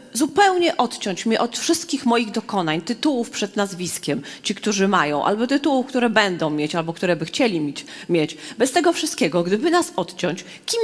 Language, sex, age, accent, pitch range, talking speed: Polish, female, 30-49, native, 175-290 Hz, 165 wpm